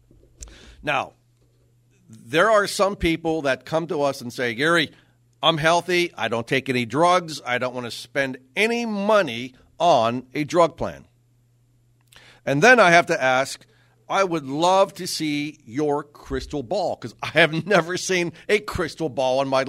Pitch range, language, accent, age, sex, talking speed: 120-165 Hz, English, American, 50-69, male, 165 wpm